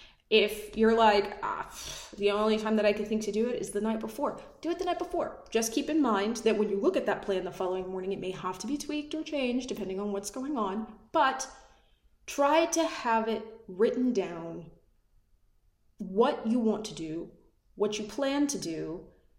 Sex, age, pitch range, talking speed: female, 20-39, 190-230 Hz, 205 wpm